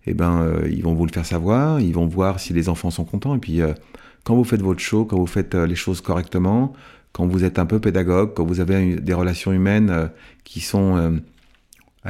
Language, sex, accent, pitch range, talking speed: French, male, French, 85-100 Hz, 245 wpm